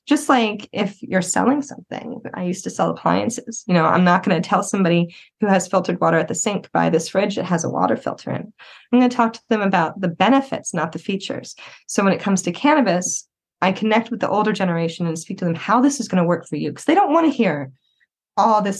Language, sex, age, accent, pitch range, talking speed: English, female, 20-39, American, 170-230 Hz, 250 wpm